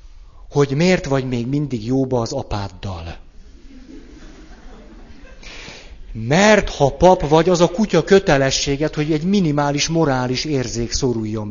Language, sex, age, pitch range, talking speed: Hungarian, male, 50-69, 100-160 Hz, 115 wpm